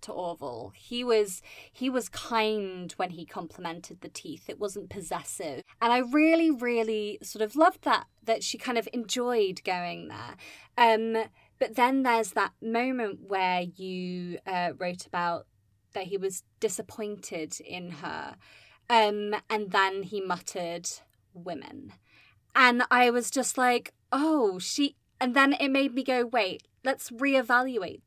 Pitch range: 185-245 Hz